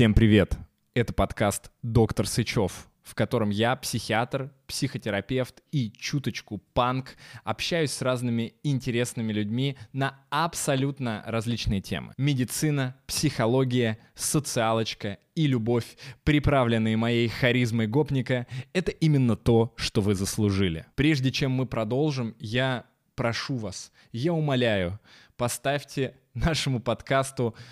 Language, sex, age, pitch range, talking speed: Russian, male, 20-39, 110-135 Hz, 110 wpm